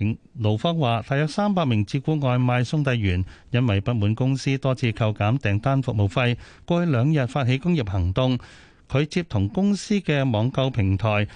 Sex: male